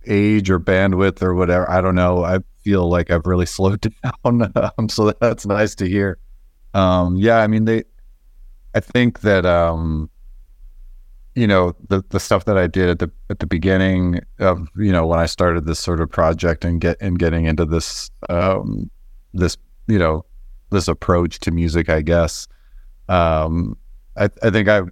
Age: 30-49